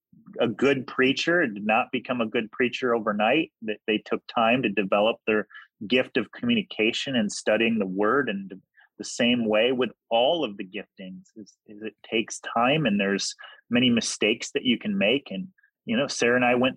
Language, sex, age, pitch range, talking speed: English, male, 30-49, 105-130 Hz, 185 wpm